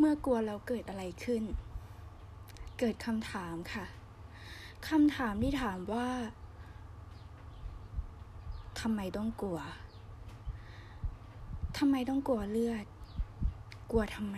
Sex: female